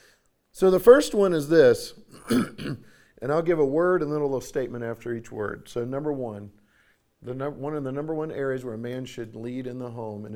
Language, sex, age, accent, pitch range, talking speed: English, male, 50-69, American, 130-180 Hz, 225 wpm